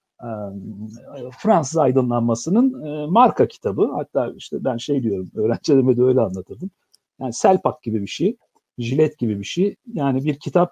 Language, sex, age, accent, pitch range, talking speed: Turkish, male, 50-69, native, 120-185 Hz, 145 wpm